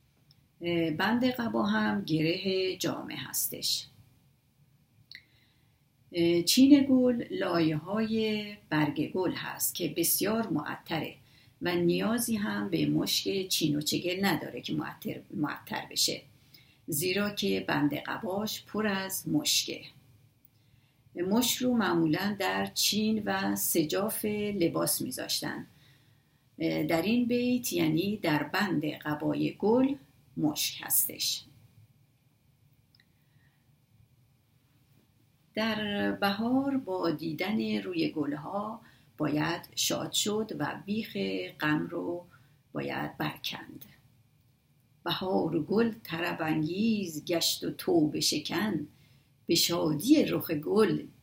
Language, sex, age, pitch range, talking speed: Persian, female, 50-69, 135-200 Hz, 90 wpm